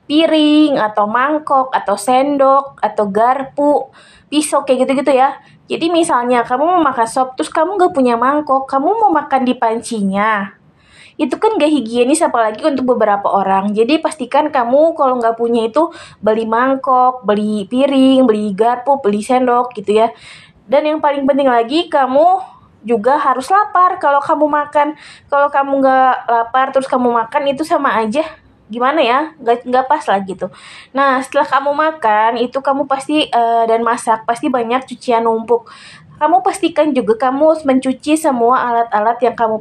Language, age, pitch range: Indonesian, 20-39, 230-280 Hz